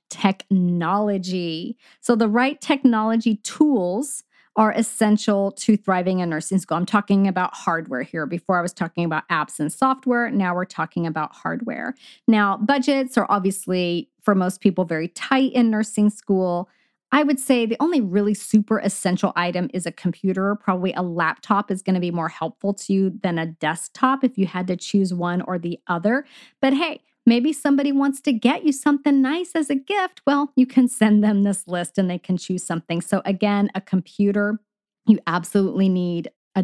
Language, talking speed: English, 180 wpm